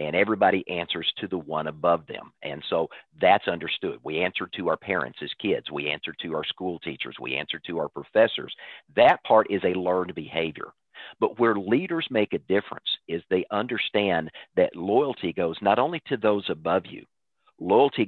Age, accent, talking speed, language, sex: 50-69, American, 185 wpm, English, male